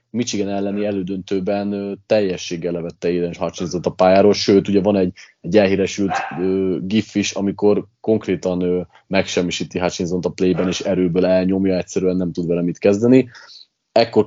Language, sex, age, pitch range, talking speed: Hungarian, male, 30-49, 100-130 Hz, 145 wpm